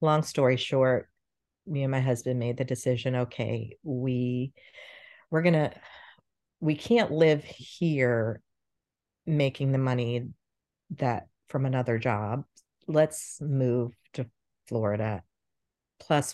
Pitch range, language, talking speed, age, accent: 120-135 Hz, English, 110 wpm, 40-59, American